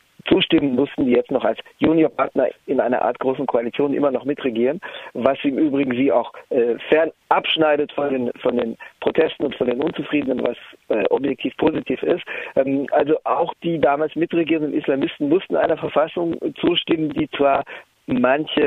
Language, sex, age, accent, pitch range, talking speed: German, male, 50-69, German, 135-175 Hz, 160 wpm